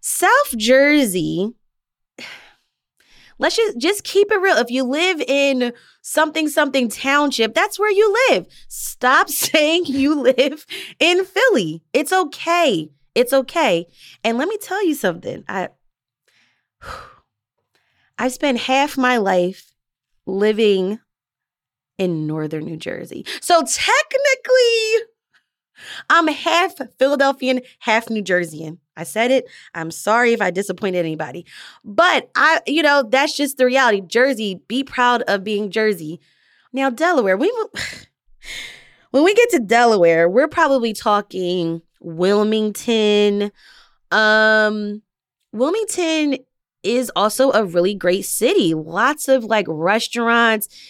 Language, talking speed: English, 120 wpm